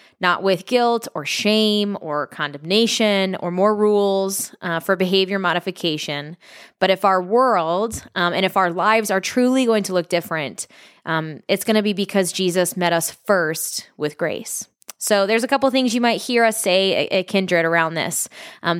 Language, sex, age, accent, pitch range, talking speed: English, female, 20-39, American, 180-225 Hz, 180 wpm